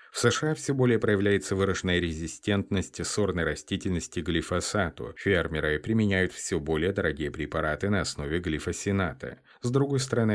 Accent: native